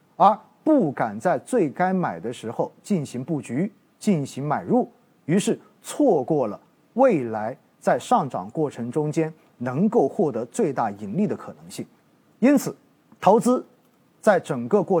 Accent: native